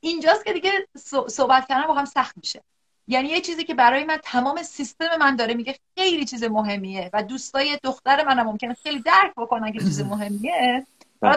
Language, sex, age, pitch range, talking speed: Persian, female, 30-49, 225-320 Hz, 185 wpm